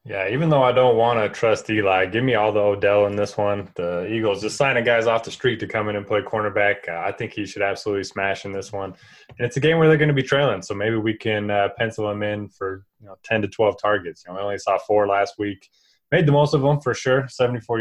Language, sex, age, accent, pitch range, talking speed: English, male, 20-39, American, 100-120 Hz, 275 wpm